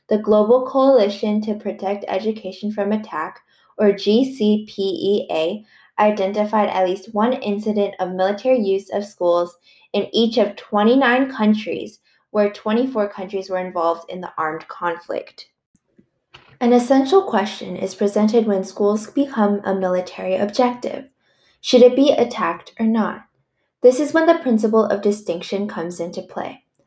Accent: American